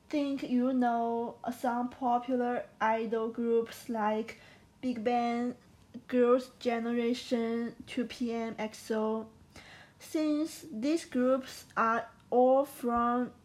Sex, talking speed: female, 90 wpm